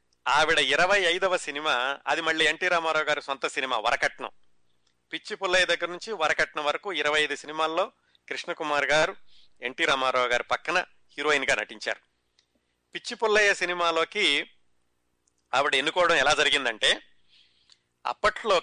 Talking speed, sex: 120 wpm, male